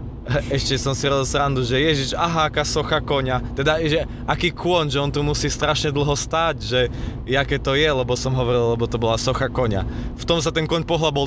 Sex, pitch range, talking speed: male, 120-145 Hz, 220 wpm